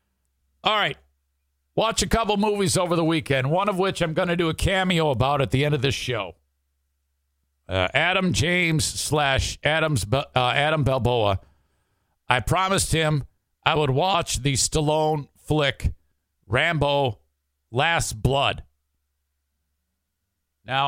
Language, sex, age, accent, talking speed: English, male, 50-69, American, 130 wpm